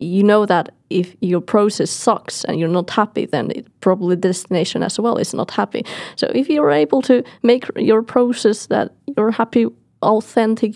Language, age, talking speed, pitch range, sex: English, 20-39, 180 wpm, 180-210 Hz, female